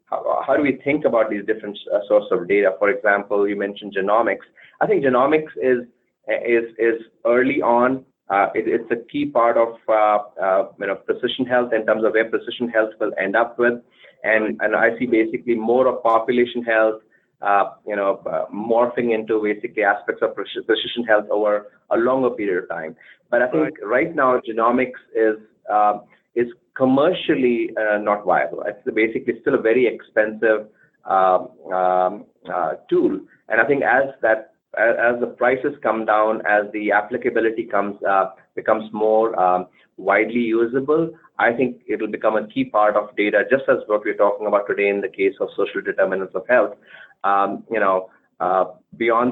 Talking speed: 180 wpm